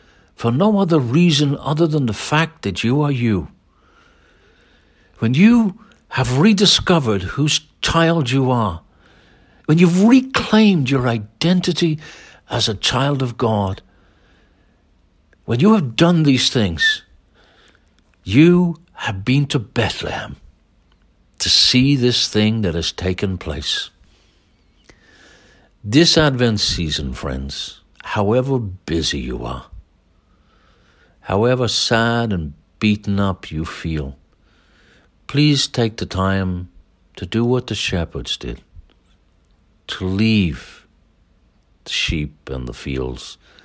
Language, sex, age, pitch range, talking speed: English, male, 60-79, 80-125 Hz, 110 wpm